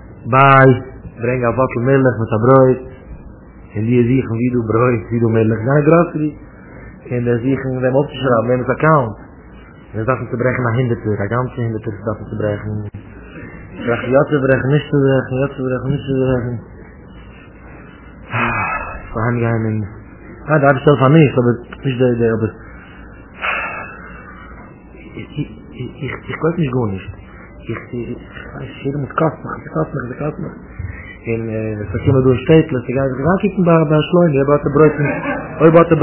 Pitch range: 115-145 Hz